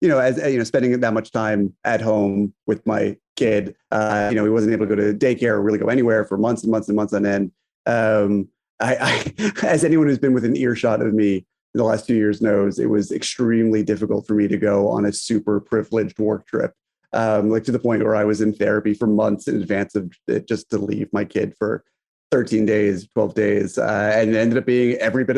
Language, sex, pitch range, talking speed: English, male, 105-125 Hz, 240 wpm